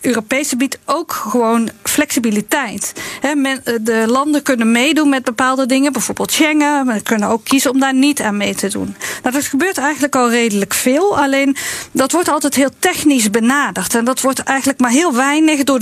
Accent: Dutch